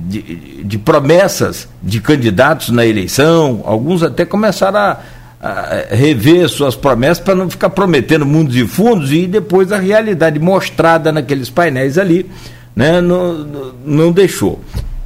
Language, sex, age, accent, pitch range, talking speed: Portuguese, male, 60-79, Brazilian, 120-175 Hz, 135 wpm